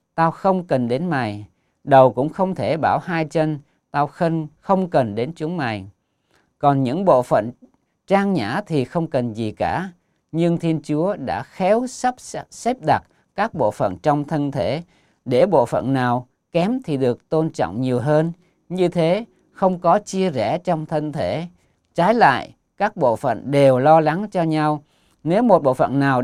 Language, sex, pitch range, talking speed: Vietnamese, male, 130-180 Hz, 180 wpm